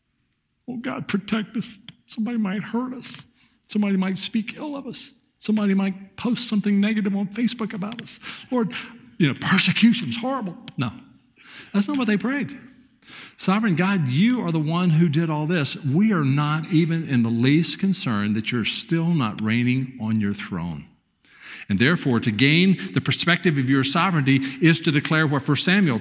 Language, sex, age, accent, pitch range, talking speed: English, male, 50-69, American, 145-210 Hz, 175 wpm